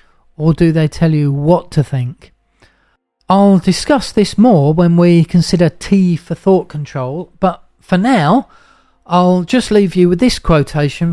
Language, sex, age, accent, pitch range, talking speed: English, male, 40-59, British, 145-180 Hz, 155 wpm